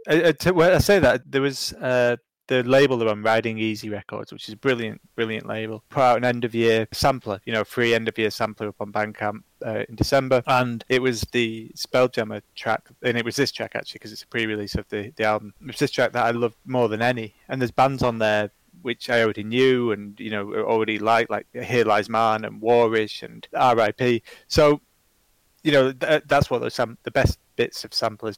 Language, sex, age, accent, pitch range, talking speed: English, male, 20-39, British, 110-130 Hz, 230 wpm